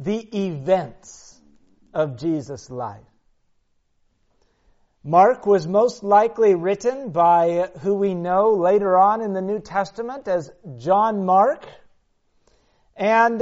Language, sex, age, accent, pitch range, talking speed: English, male, 50-69, American, 185-235 Hz, 105 wpm